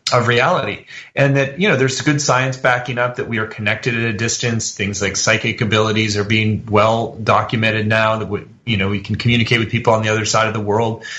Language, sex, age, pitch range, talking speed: English, male, 30-49, 115-145 Hz, 230 wpm